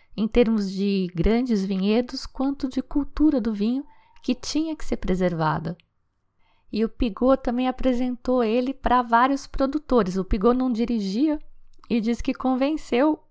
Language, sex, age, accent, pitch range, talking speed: Portuguese, female, 20-39, Brazilian, 200-260 Hz, 145 wpm